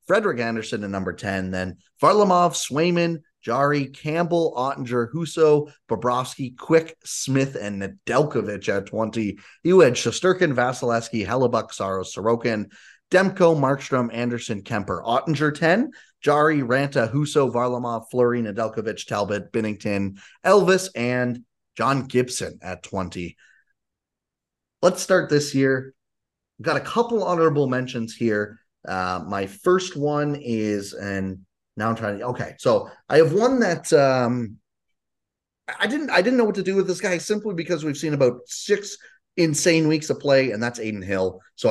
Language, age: English, 30-49